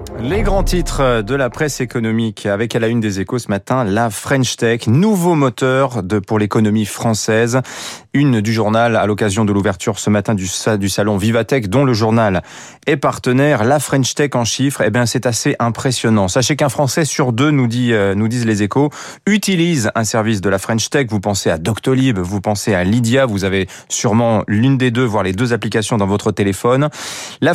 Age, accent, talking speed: 30-49, French, 200 wpm